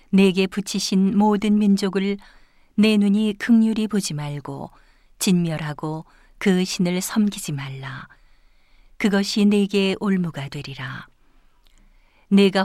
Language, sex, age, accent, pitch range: Korean, female, 40-59, native, 165-205 Hz